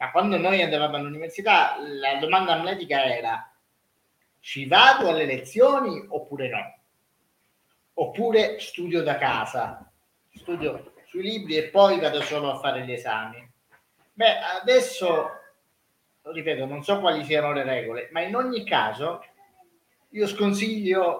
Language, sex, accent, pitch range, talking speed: Italian, male, native, 135-175 Hz, 125 wpm